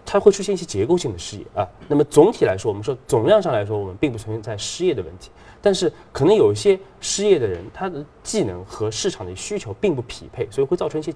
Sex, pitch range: male, 100-150 Hz